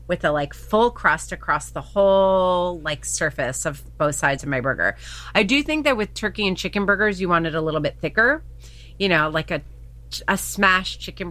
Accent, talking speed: American, 205 wpm